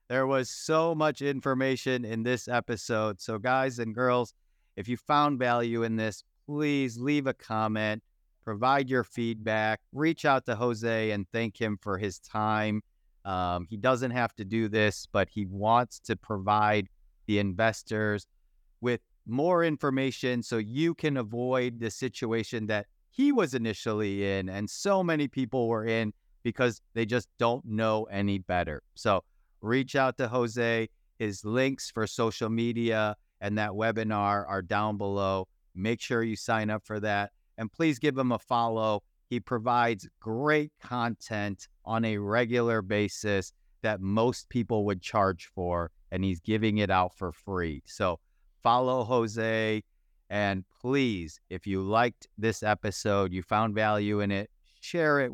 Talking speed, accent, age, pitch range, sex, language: 155 wpm, American, 30-49, 100-120 Hz, male, English